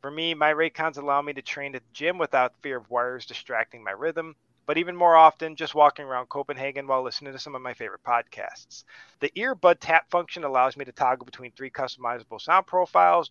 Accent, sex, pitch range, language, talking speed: American, male, 125-160 Hz, English, 210 wpm